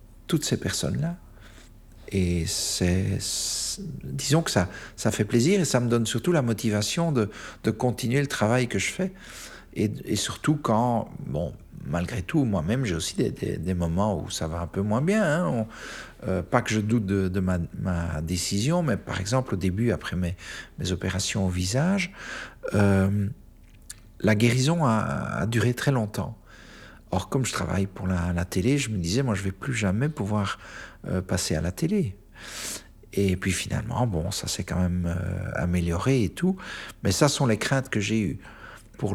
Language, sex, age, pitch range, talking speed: French, male, 50-69, 95-120 Hz, 190 wpm